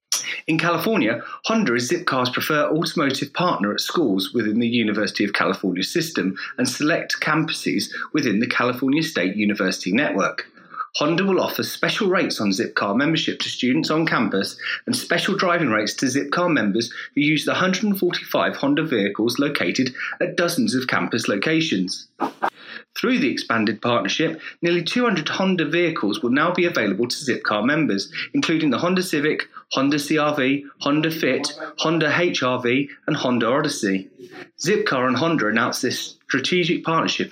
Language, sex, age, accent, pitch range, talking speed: English, male, 30-49, British, 120-175 Hz, 145 wpm